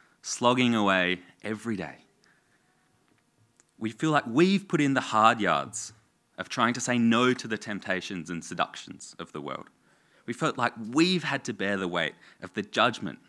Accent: Australian